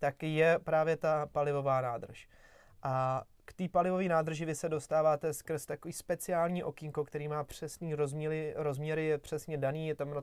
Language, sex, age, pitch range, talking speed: Czech, male, 30-49, 145-160 Hz, 170 wpm